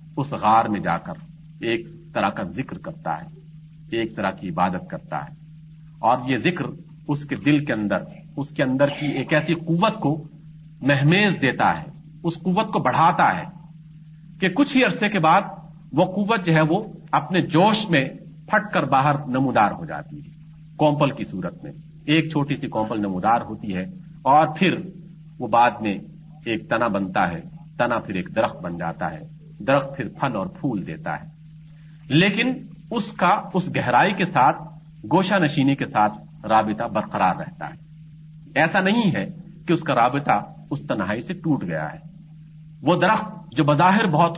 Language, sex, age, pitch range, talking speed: Urdu, male, 50-69, 145-175 Hz, 175 wpm